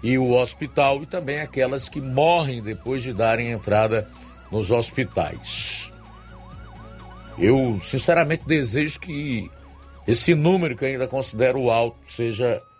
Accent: Brazilian